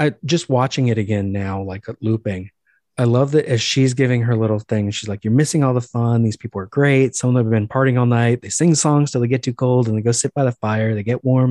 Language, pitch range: English, 105-135 Hz